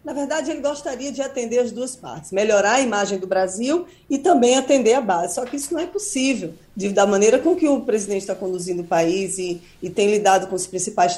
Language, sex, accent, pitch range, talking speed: Portuguese, female, Brazilian, 190-245 Hz, 225 wpm